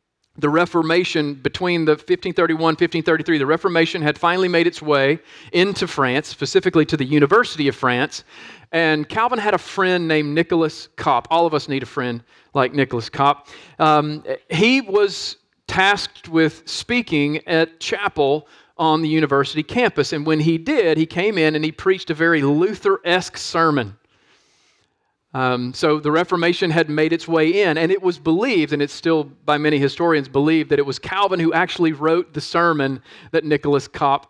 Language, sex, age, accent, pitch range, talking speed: English, male, 40-59, American, 145-175 Hz, 170 wpm